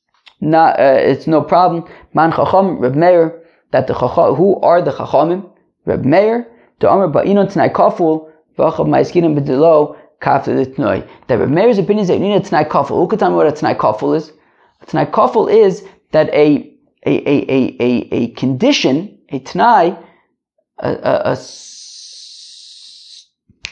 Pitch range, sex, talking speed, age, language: 155-210 Hz, male, 160 wpm, 30-49, English